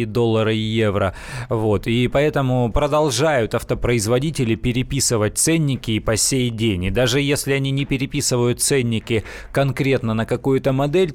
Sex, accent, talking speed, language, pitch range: male, native, 135 wpm, Russian, 120-145 Hz